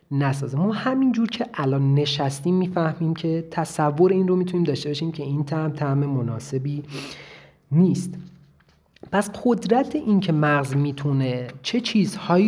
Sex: male